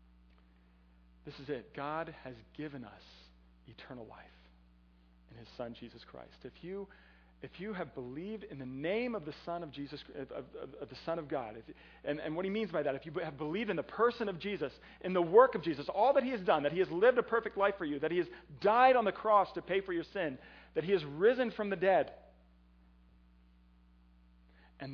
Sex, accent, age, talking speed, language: male, American, 40-59, 220 wpm, English